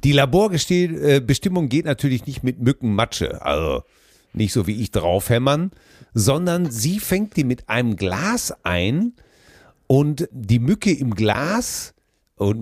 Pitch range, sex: 105-150 Hz, male